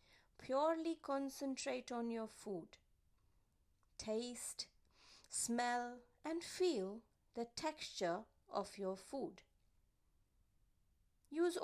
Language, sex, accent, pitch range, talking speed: English, female, Indian, 190-290 Hz, 75 wpm